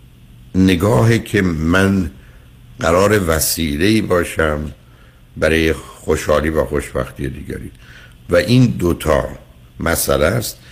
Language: Persian